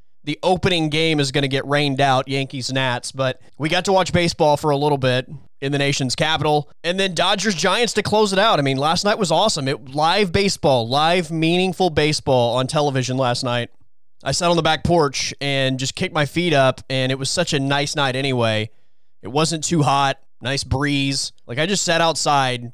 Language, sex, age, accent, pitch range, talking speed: English, male, 20-39, American, 130-165 Hz, 205 wpm